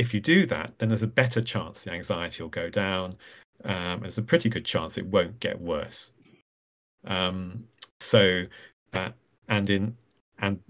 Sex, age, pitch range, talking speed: male, 40-59, 95-115 Hz, 175 wpm